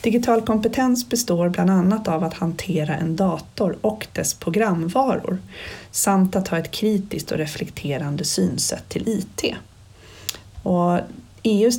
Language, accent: Swedish, native